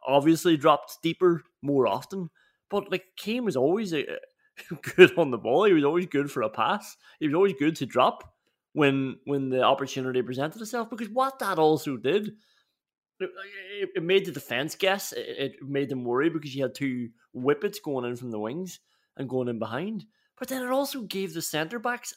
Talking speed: 195 wpm